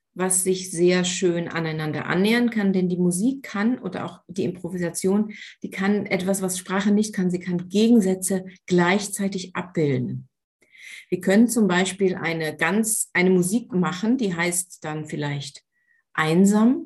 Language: German